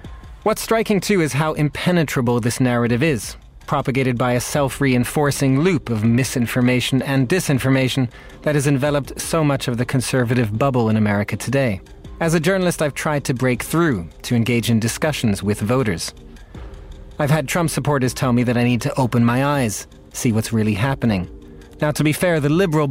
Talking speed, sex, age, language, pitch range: 175 wpm, male, 30-49, English, 120-155 Hz